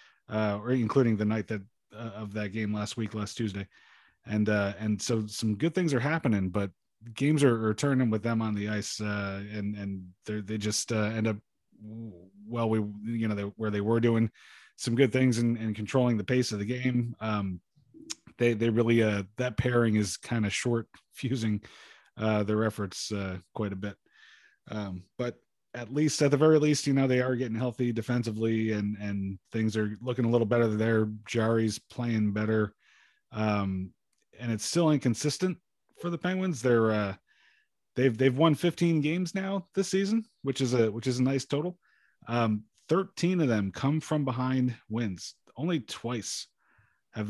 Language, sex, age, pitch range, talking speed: English, male, 30-49, 105-125 Hz, 185 wpm